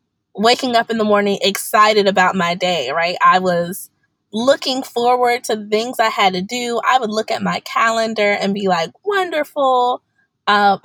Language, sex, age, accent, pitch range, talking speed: English, female, 20-39, American, 195-270 Hz, 170 wpm